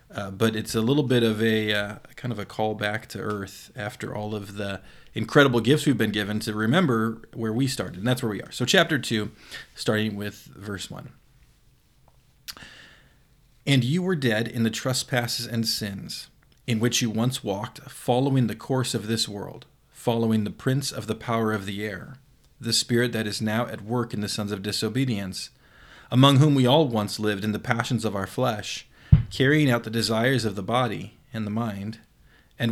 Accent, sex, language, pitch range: American, male, English, 105-130 Hz